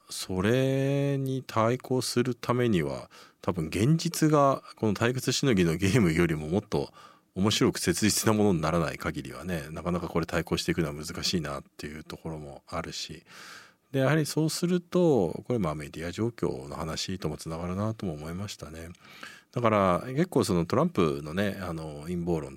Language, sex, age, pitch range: Japanese, male, 40-59, 85-130 Hz